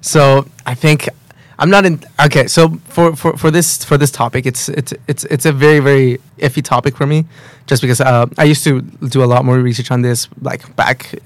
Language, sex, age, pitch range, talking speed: English, male, 20-39, 125-145 Hz, 220 wpm